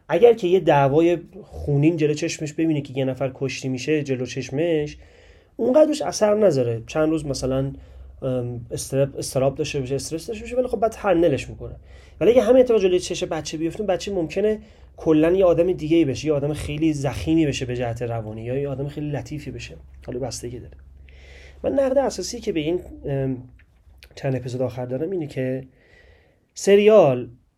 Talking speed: 175 wpm